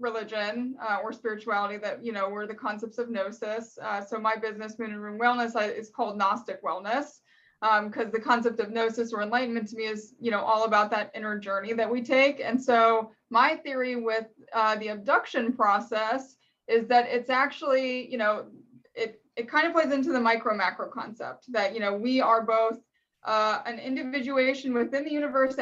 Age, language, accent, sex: 20-39, English, American, female